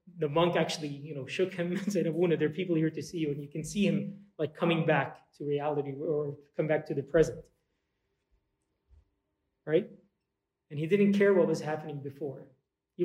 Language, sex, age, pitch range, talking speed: English, male, 30-49, 150-190 Hz, 195 wpm